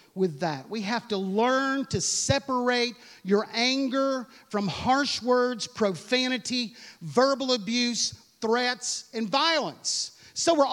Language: English